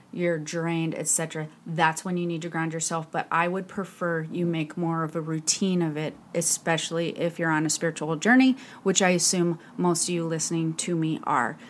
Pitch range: 160-185 Hz